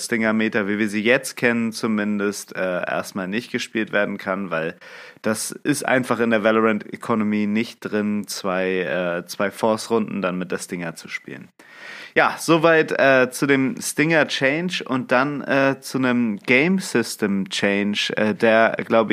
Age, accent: 30-49, German